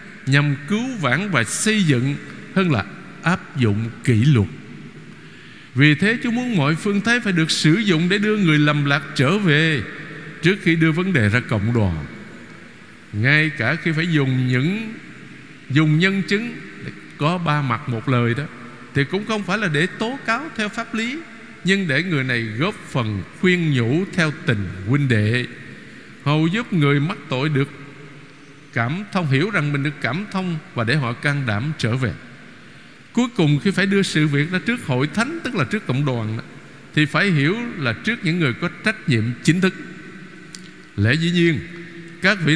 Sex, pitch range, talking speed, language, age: male, 135-185 Hz, 185 wpm, Vietnamese, 50-69